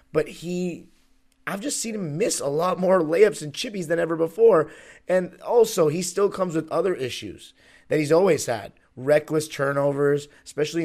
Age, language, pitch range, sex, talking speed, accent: 30-49, English, 140-170 Hz, male, 170 wpm, American